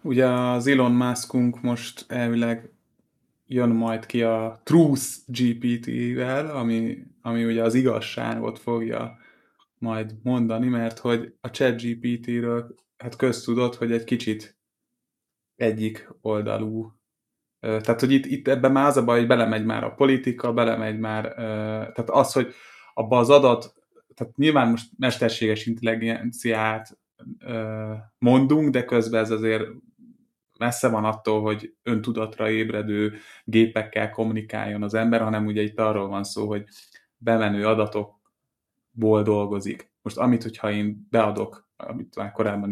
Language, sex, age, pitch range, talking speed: Hungarian, male, 20-39, 110-125 Hz, 130 wpm